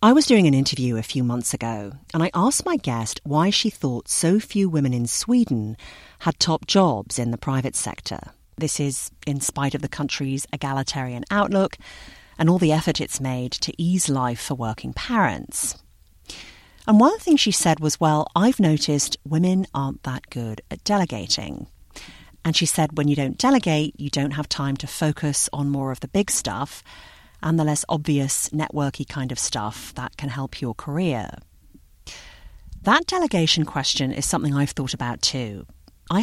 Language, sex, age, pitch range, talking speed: English, female, 40-59, 130-175 Hz, 180 wpm